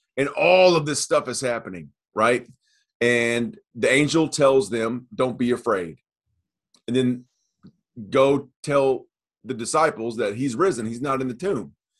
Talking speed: 150 wpm